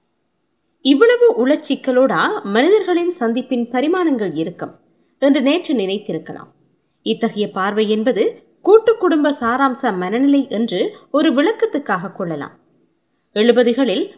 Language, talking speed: Tamil, 90 wpm